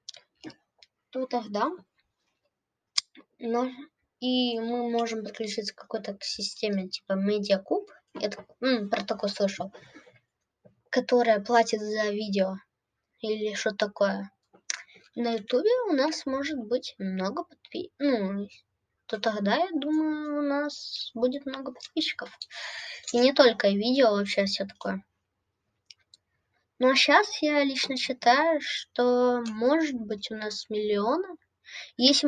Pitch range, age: 200-265 Hz, 20-39